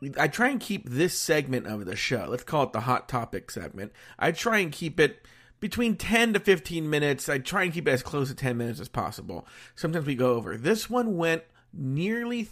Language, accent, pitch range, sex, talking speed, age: English, American, 130-185 Hz, male, 220 wpm, 40-59